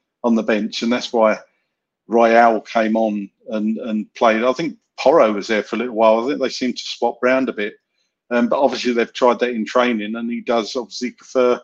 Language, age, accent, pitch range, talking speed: English, 50-69, British, 115-140 Hz, 220 wpm